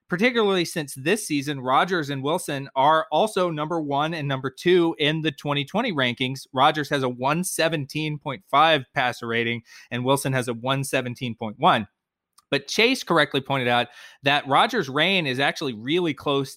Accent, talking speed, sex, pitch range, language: American, 150 wpm, male, 130-160 Hz, English